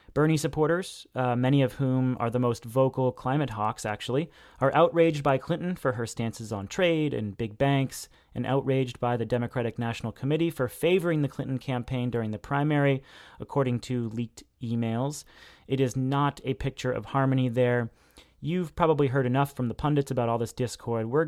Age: 30-49